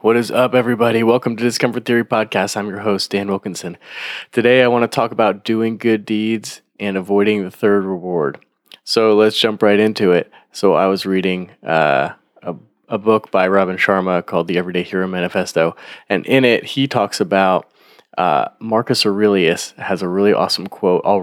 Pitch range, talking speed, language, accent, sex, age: 95-110 Hz, 185 wpm, English, American, male, 20-39